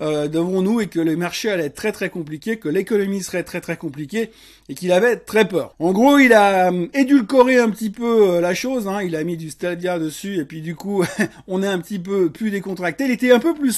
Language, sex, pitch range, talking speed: French, male, 175-230 Hz, 250 wpm